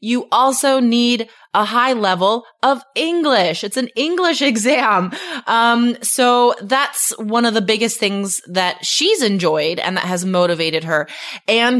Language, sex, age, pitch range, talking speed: English, female, 20-39, 190-255 Hz, 145 wpm